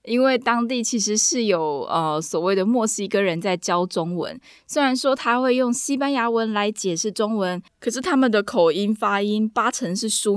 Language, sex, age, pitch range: Chinese, female, 20-39, 180-240 Hz